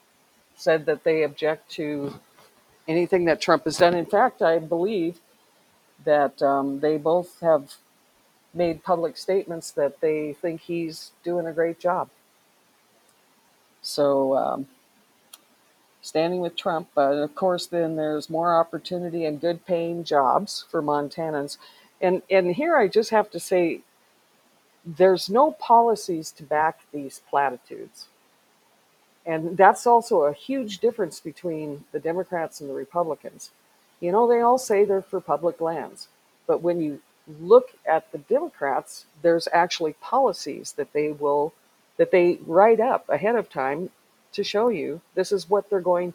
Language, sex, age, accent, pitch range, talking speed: English, female, 60-79, American, 155-195 Hz, 145 wpm